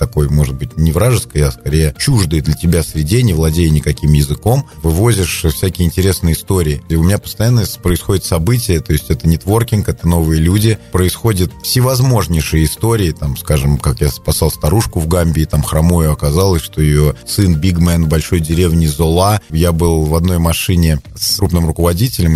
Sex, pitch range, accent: male, 80-105 Hz, native